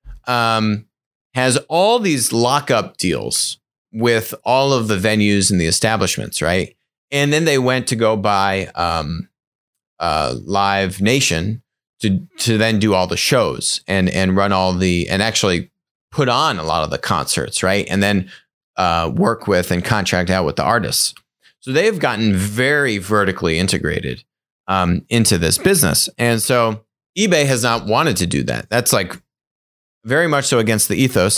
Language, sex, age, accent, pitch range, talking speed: English, male, 30-49, American, 100-130 Hz, 165 wpm